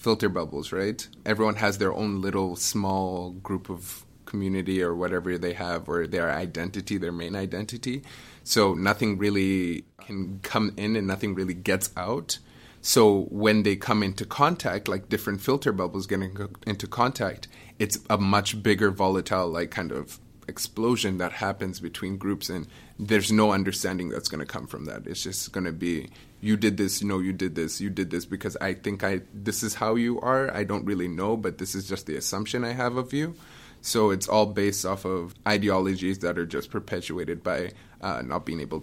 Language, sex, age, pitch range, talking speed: English, male, 30-49, 95-110 Hz, 195 wpm